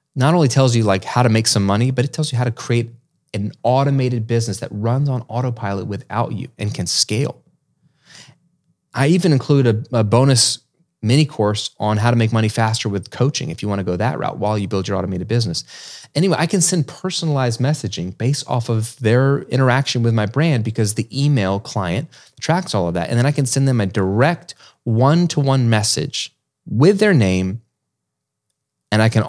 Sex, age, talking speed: male, 30-49, 195 wpm